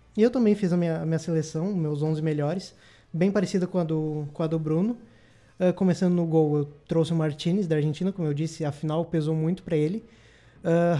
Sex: male